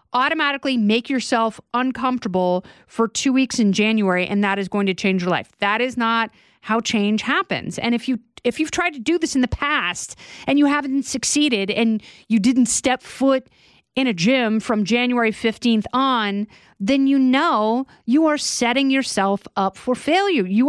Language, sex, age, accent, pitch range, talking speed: English, female, 30-49, American, 230-310 Hz, 185 wpm